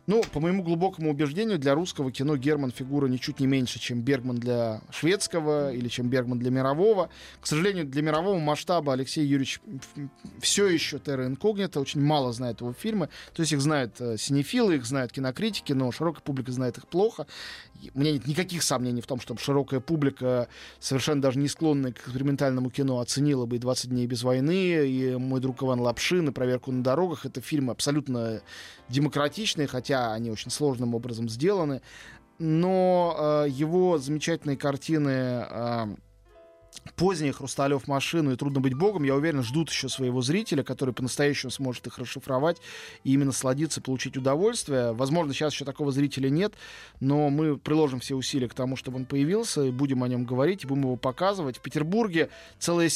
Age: 20-39